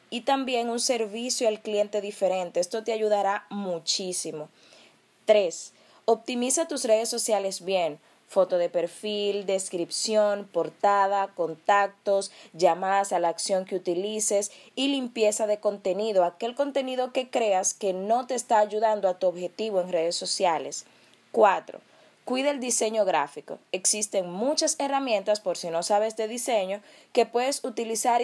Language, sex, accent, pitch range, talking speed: Spanish, female, American, 195-235 Hz, 140 wpm